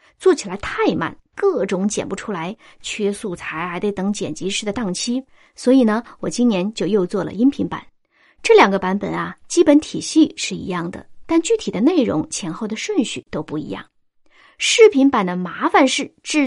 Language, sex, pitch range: Chinese, female, 200-290 Hz